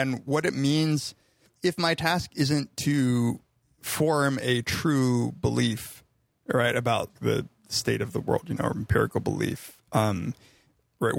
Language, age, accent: English, 30-49, American